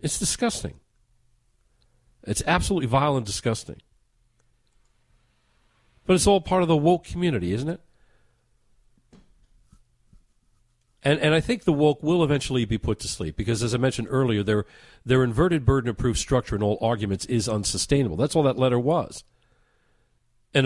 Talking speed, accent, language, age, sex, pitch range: 145 wpm, American, English, 50-69, male, 115-160 Hz